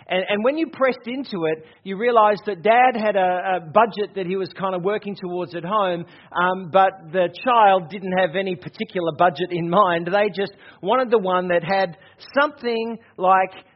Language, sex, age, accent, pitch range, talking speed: English, male, 40-59, Australian, 170-210 Hz, 190 wpm